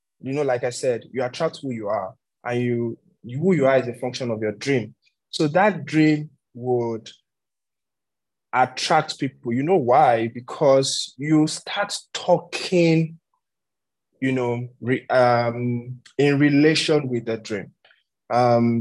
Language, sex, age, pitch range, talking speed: English, male, 20-39, 115-145 Hz, 140 wpm